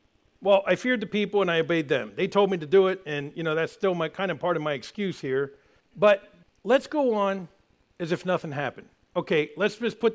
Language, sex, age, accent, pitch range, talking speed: English, male, 50-69, American, 155-205 Hz, 235 wpm